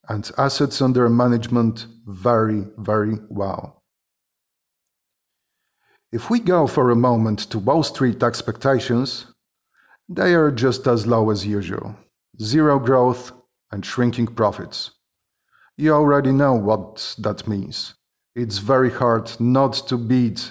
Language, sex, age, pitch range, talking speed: English, male, 50-69, 110-135 Hz, 120 wpm